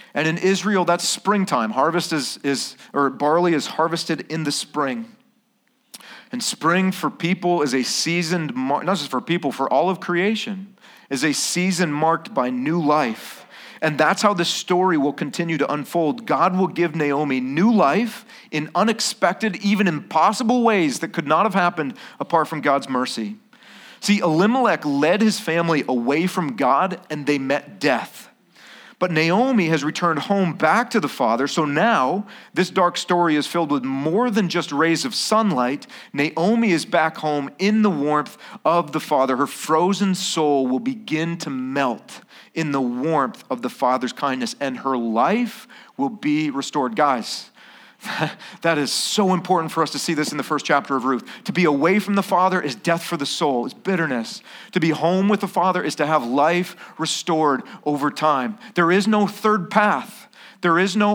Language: English